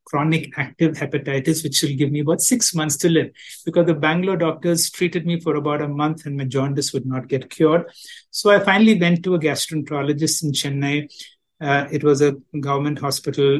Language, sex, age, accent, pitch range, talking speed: English, male, 60-79, Indian, 145-175 Hz, 195 wpm